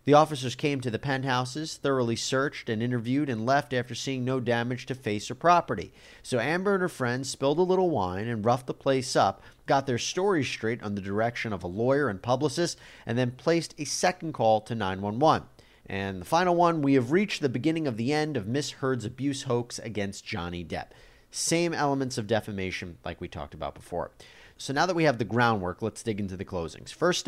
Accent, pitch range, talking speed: American, 105-145 Hz, 210 wpm